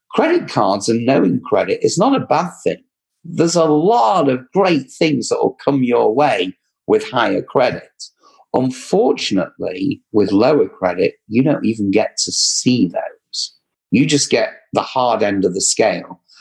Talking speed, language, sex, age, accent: 160 wpm, English, male, 50-69, British